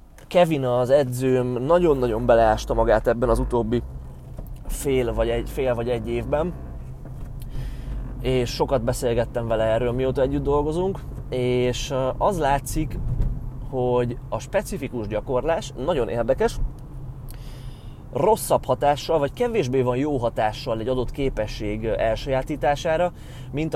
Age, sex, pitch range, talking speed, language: 20-39, male, 115-140 Hz, 110 wpm, Hungarian